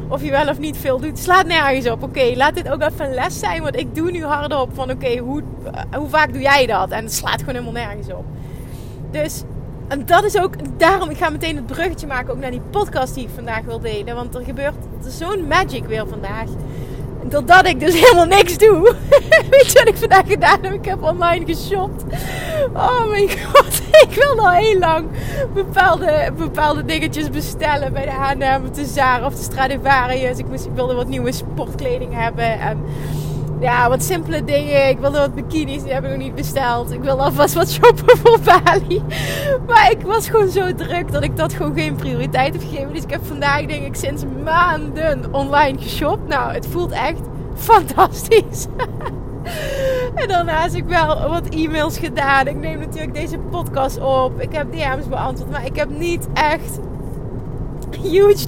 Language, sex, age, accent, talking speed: Dutch, female, 20-39, Dutch, 190 wpm